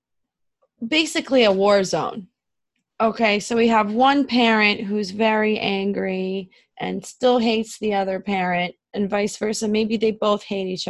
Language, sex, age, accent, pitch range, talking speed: English, female, 20-39, American, 205-245 Hz, 150 wpm